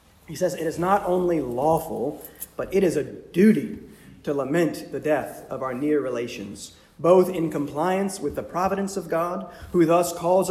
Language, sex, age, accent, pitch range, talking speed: English, male, 40-59, American, 135-200 Hz, 175 wpm